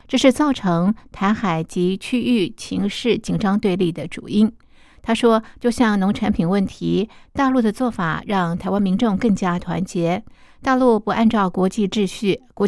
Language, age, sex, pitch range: Chinese, 50-69, female, 180-220 Hz